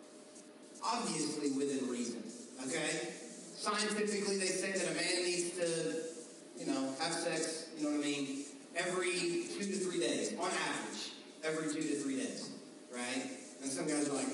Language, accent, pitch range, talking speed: English, American, 150-205 Hz, 165 wpm